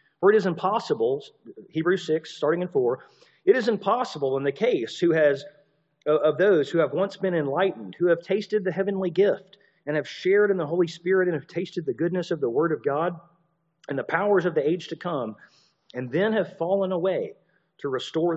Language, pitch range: English, 165-225 Hz